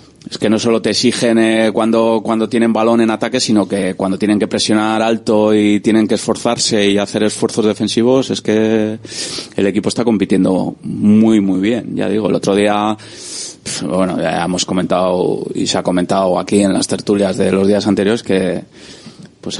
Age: 20-39